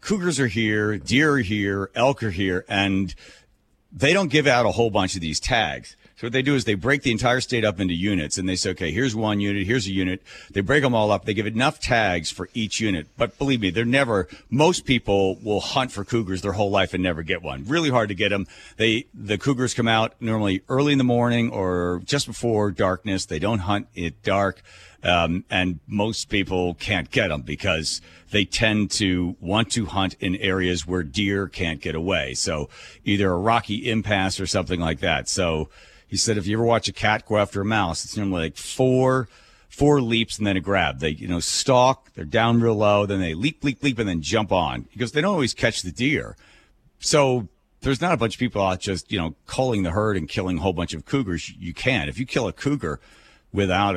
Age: 50-69